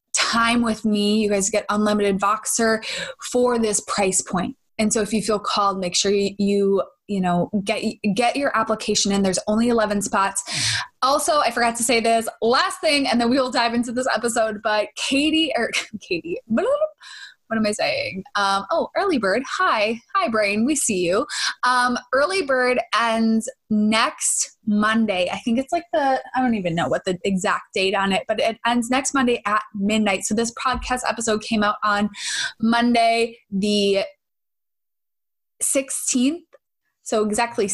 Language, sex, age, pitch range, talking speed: English, female, 20-39, 210-250 Hz, 175 wpm